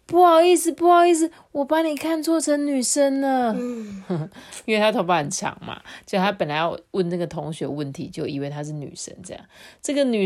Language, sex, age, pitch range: Chinese, female, 30-49, 165-240 Hz